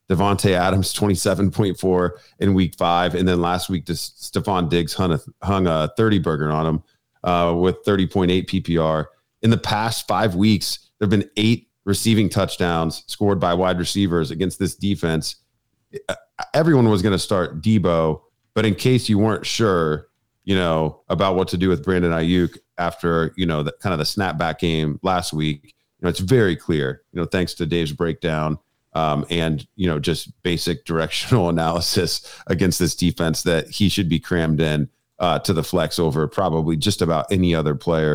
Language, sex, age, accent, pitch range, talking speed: English, male, 40-59, American, 80-100 Hz, 175 wpm